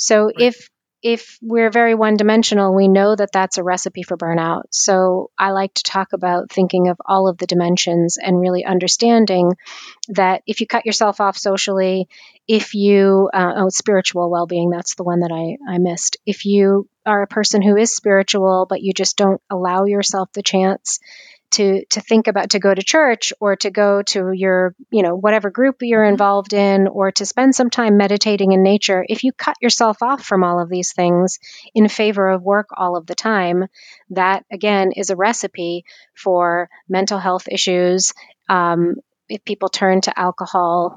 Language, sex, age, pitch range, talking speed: English, female, 30-49, 180-210 Hz, 185 wpm